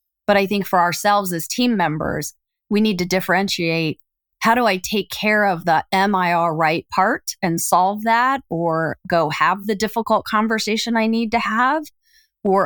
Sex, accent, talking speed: female, American, 170 wpm